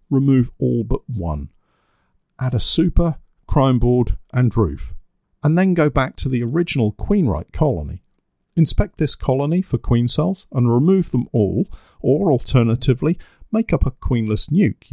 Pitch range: 100-140 Hz